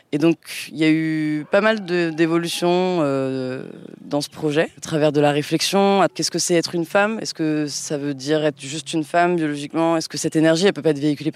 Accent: French